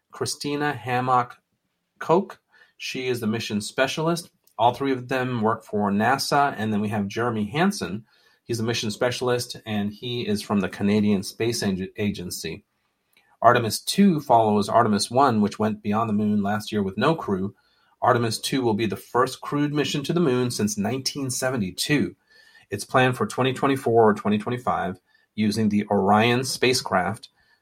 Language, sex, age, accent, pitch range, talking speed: English, male, 30-49, American, 105-130 Hz, 155 wpm